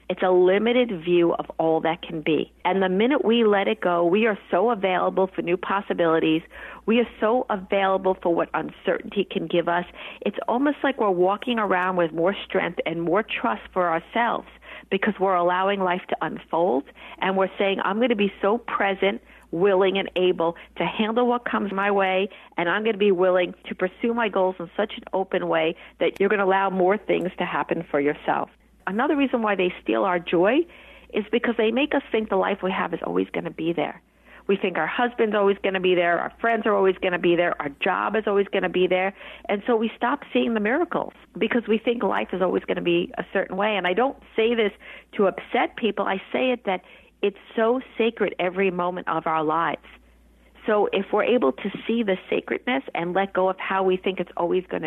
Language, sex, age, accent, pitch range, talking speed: English, female, 50-69, American, 180-225 Hz, 220 wpm